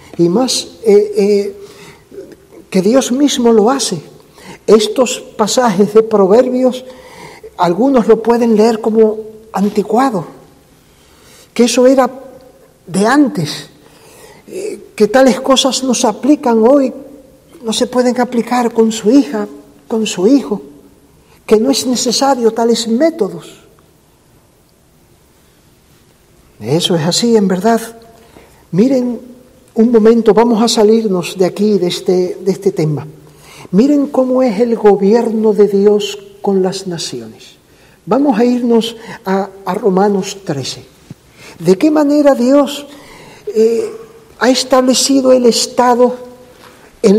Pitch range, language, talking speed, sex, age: 205-260 Hz, Spanish, 115 wpm, male, 50-69